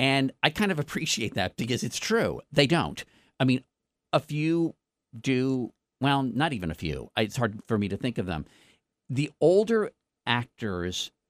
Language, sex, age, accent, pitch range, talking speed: English, male, 50-69, American, 105-150 Hz, 170 wpm